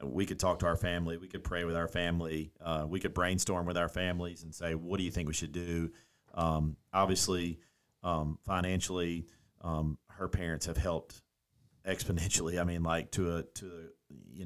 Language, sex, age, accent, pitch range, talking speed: English, male, 40-59, American, 80-95 Hz, 185 wpm